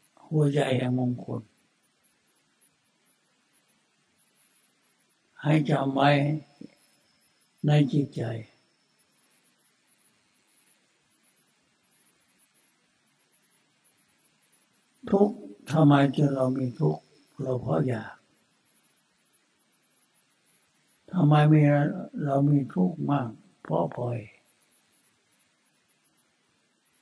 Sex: male